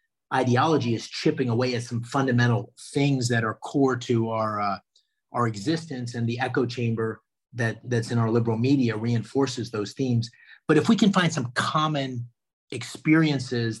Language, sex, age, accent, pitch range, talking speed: English, male, 40-59, American, 115-135 Hz, 160 wpm